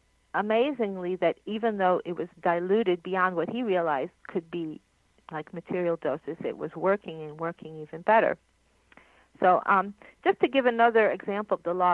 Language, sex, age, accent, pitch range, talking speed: English, female, 50-69, American, 165-210 Hz, 165 wpm